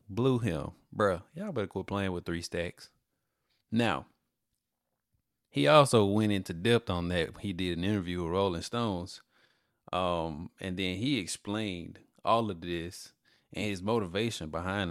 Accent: American